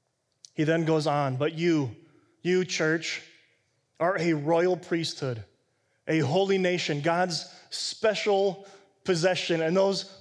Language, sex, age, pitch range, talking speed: English, male, 30-49, 140-220 Hz, 120 wpm